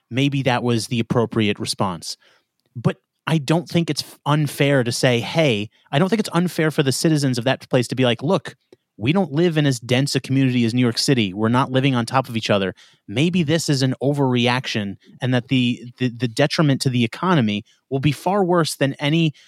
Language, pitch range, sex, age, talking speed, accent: English, 120-150 Hz, male, 30-49, 215 wpm, American